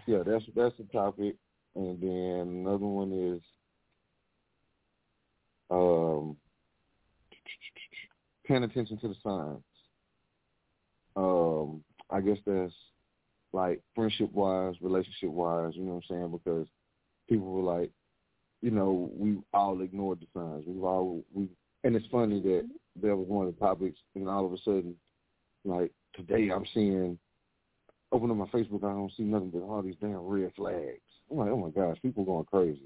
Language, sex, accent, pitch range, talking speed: English, male, American, 90-110 Hz, 155 wpm